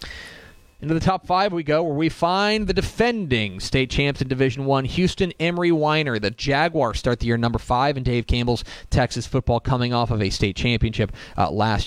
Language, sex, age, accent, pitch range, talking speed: English, male, 30-49, American, 105-135 Hz, 195 wpm